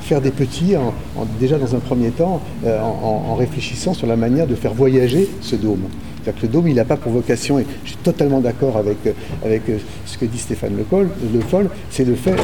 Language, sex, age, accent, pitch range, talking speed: French, male, 50-69, French, 105-135 Hz, 235 wpm